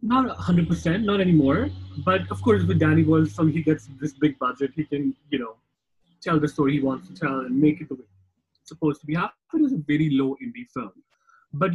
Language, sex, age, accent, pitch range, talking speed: English, male, 30-49, Indian, 110-150 Hz, 230 wpm